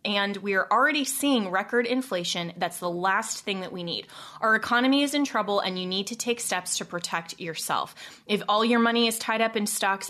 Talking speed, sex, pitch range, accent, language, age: 215 wpm, female, 195-245 Hz, American, English, 20-39